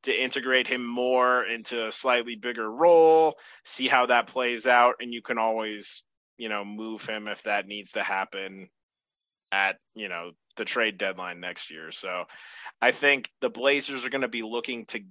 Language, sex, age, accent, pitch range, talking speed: English, male, 20-39, American, 110-125 Hz, 185 wpm